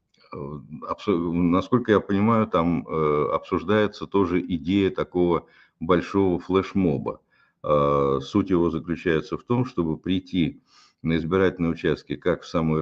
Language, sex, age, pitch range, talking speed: Russian, male, 60-79, 80-100 Hz, 110 wpm